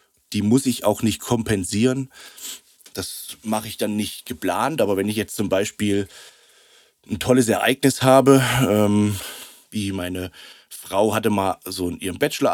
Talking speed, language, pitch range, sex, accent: 150 wpm, German, 100-120 Hz, male, German